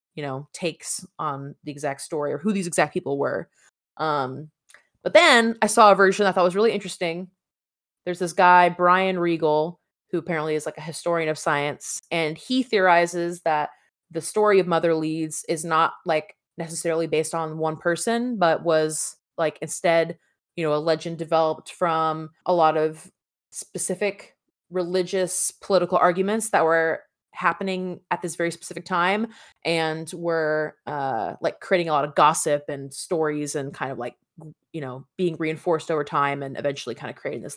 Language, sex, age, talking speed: English, female, 20-39, 170 wpm